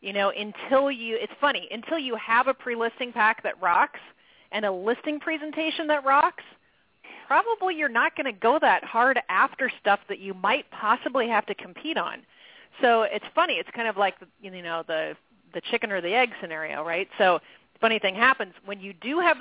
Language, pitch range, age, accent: English, 185-250 Hz, 30-49, American